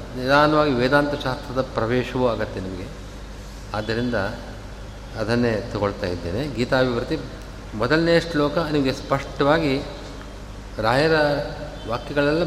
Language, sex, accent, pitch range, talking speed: Kannada, male, native, 105-140 Hz, 75 wpm